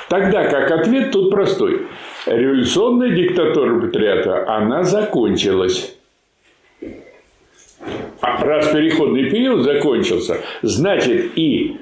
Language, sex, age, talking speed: Russian, male, 50-69, 85 wpm